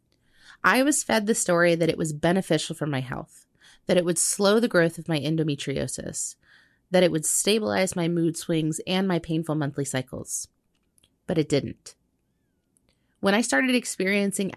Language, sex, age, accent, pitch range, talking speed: English, female, 30-49, American, 160-210 Hz, 165 wpm